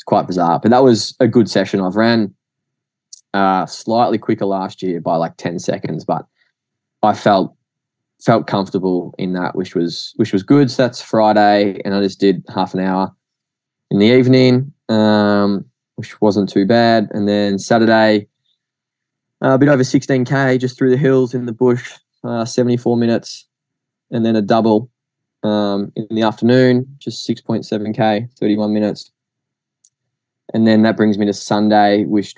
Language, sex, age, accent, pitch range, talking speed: English, male, 10-29, Australian, 95-120 Hz, 170 wpm